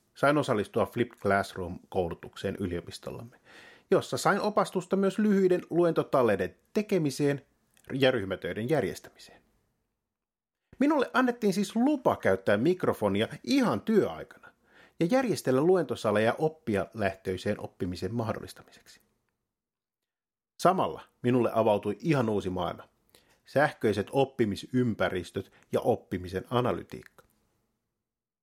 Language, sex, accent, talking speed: Finnish, male, native, 85 wpm